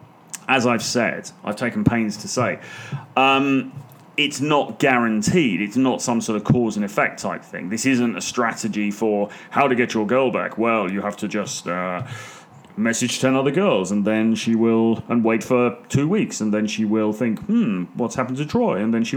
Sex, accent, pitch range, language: male, British, 110-155 Hz, English